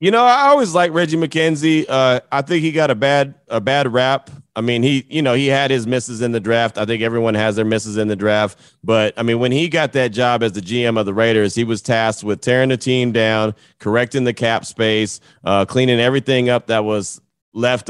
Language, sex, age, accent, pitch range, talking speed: English, male, 30-49, American, 110-135 Hz, 240 wpm